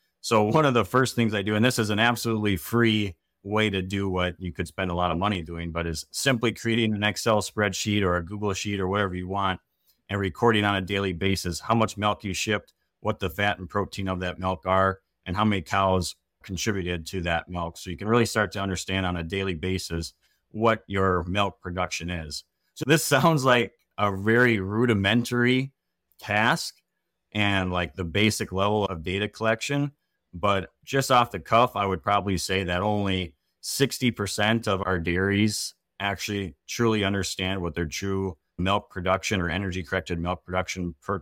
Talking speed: 190 wpm